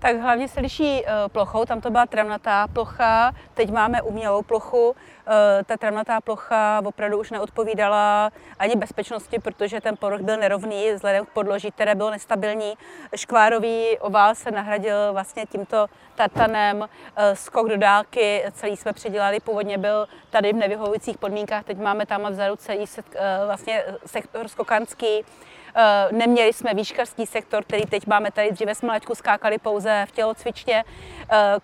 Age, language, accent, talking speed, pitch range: 30-49, Czech, native, 155 wpm, 205-225 Hz